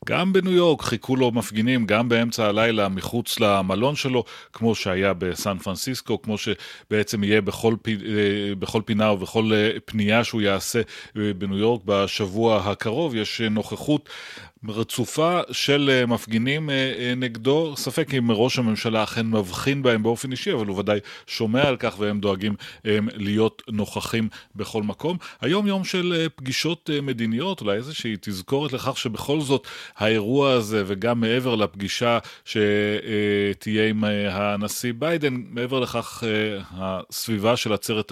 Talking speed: 135 wpm